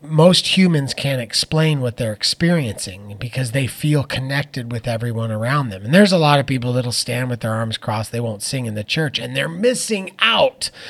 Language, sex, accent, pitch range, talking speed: English, male, American, 120-145 Hz, 205 wpm